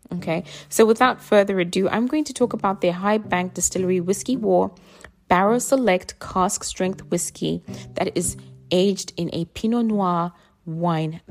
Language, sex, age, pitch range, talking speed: English, female, 20-39, 175-205 Hz, 155 wpm